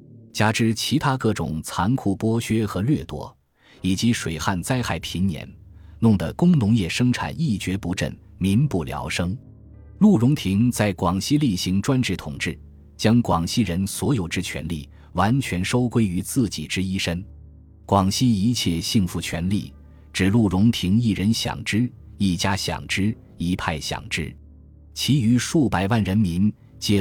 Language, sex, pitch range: Chinese, male, 85-115 Hz